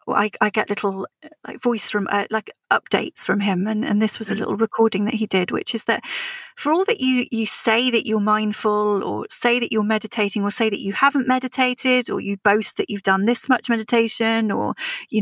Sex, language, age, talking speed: female, English, 30-49, 220 wpm